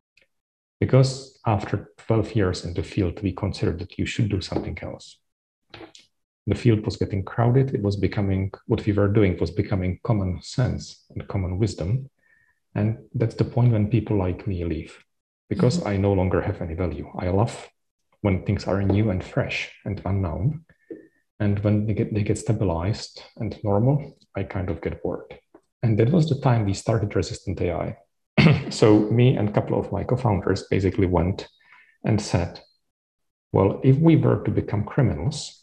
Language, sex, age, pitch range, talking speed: English, male, 40-59, 95-115 Hz, 170 wpm